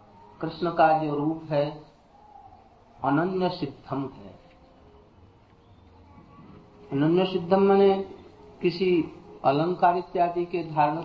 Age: 50-69